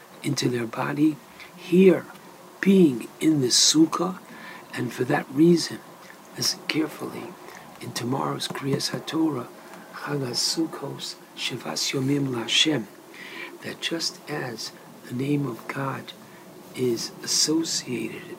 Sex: male